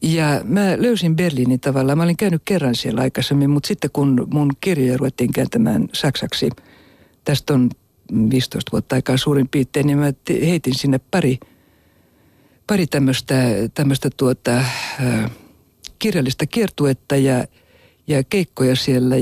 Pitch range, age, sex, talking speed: 130-150 Hz, 60-79, female, 130 wpm